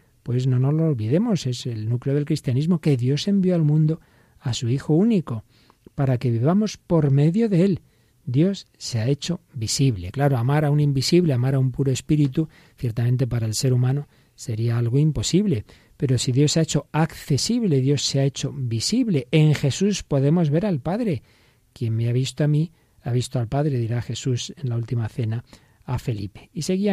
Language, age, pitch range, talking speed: Spanish, 40-59, 120-160 Hz, 195 wpm